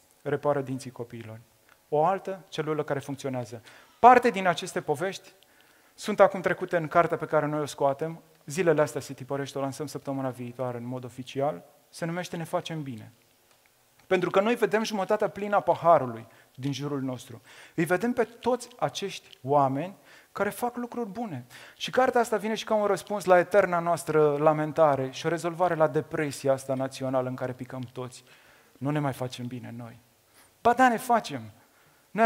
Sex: male